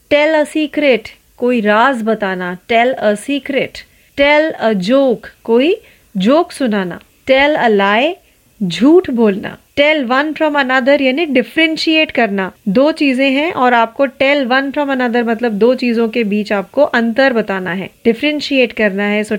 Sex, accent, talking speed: female, native, 75 wpm